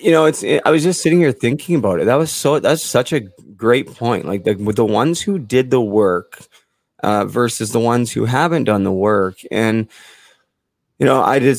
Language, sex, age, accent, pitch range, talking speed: English, male, 20-39, American, 105-135 Hz, 225 wpm